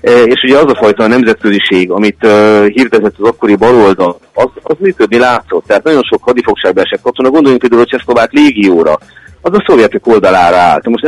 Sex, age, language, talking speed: male, 40-59, Hungarian, 185 wpm